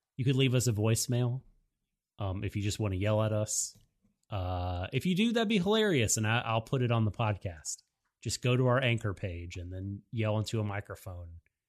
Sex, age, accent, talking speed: male, 30-49, American, 210 wpm